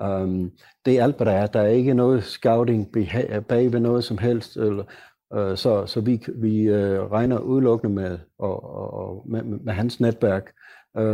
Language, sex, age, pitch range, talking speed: Danish, male, 60-79, 100-120 Hz, 190 wpm